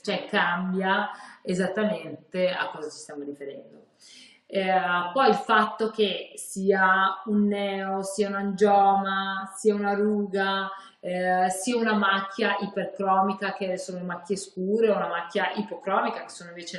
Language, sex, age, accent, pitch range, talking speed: Italian, female, 30-49, native, 175-215 Hz, 140 wpm